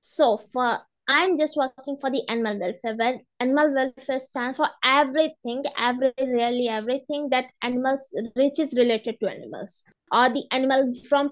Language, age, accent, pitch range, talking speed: English, 20-39, Indian, 245-290 Hz, 155 wpm